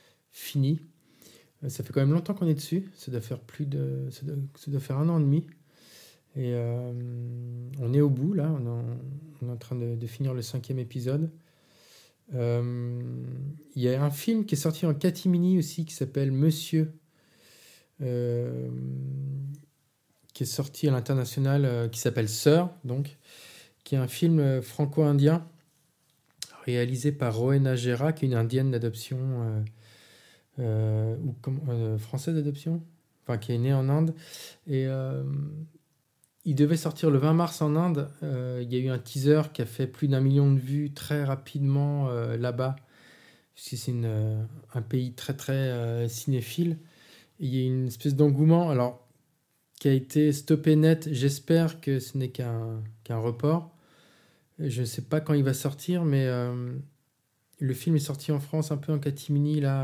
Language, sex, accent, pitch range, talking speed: French, male, French, 125-155 Hz, 175 wpm